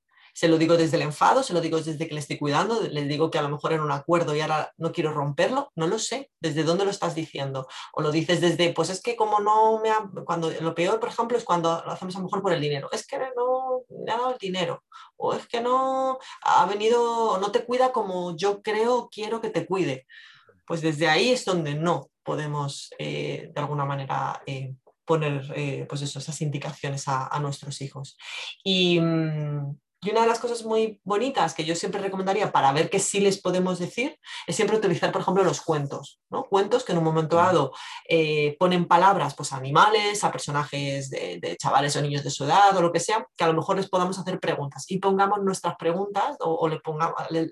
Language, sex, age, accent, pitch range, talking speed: Spanish, female, 30-49, Spanish, 150-200 Hz, 225 wpm